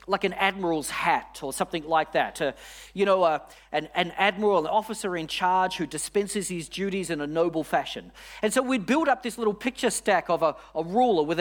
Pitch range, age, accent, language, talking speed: 170-205 Hz, 40-59, Australian, English, 215 wpm